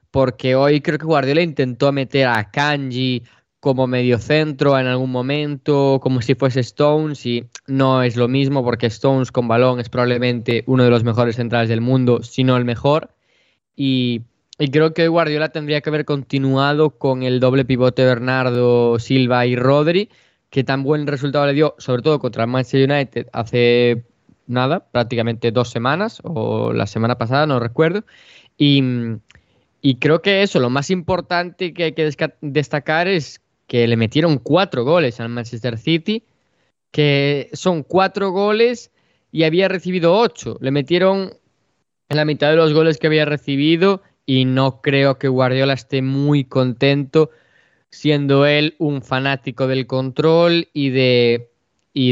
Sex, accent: male, Spanish